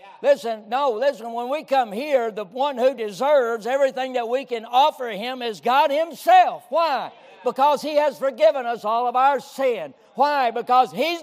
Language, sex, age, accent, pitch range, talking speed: English, male, 60-79, American, 170-245 Hz, 175 wpm